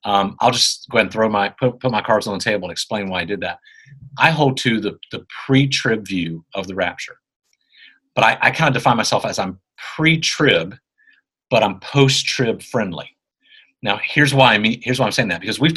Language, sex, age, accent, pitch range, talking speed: English, male, 40-59, American, 95-135 Hz, 215 wpm